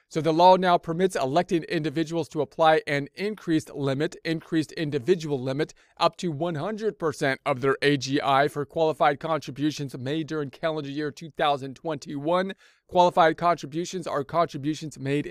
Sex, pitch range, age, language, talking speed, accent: male, 145-165 Hz, 40-59, English, 135 wpm, American